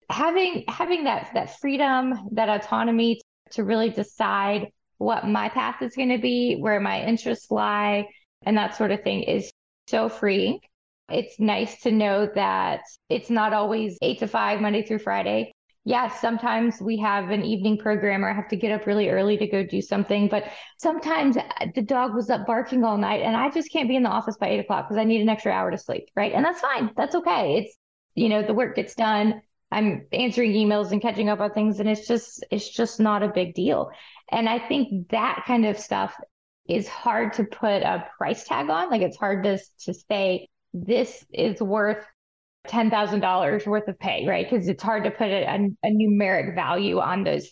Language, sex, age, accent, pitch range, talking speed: English, female, 20-39, American, 205-235 Hz, 205 wpm